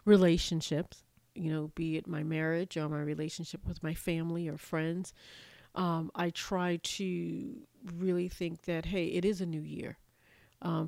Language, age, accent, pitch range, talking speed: English, 40-59, American, 160-195 Hz, 160 wpm